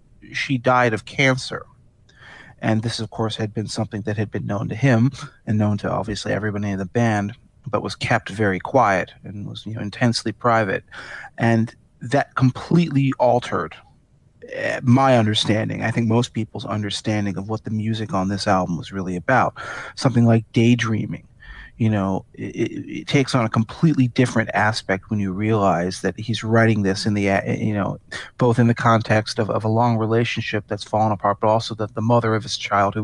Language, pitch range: English, 105-125 Hz